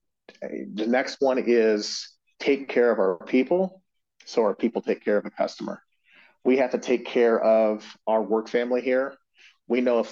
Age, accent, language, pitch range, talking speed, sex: 30-49, American, English, 115-140 Hz, 180 wpm, male